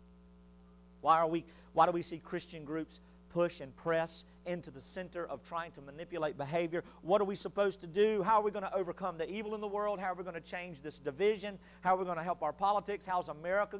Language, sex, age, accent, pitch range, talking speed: English, male, 50-69, American, 140-200 Hz, 245 wpm